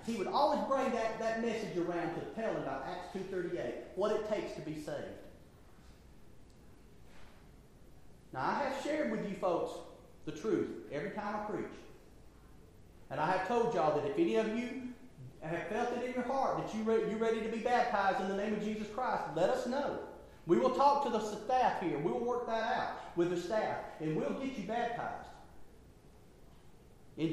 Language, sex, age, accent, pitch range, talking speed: English, male, 40-59, American, 180-245 Hz, 185 wpm